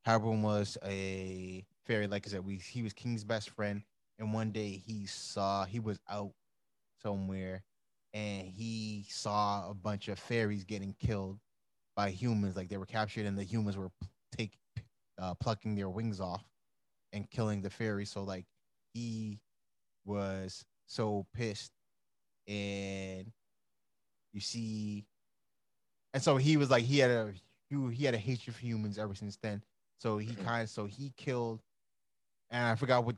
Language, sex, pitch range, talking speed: English, male, 100-115 Hz, 160 wpm